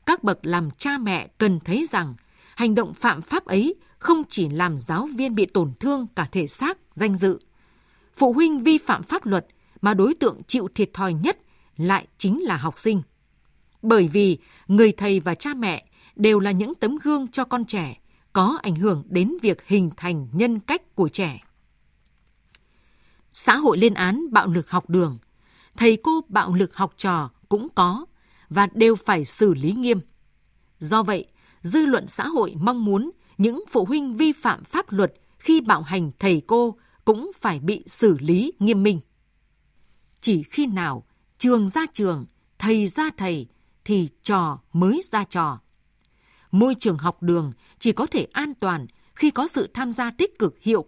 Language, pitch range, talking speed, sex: Vietnamese, 175-240 Hz, 175 wpm, female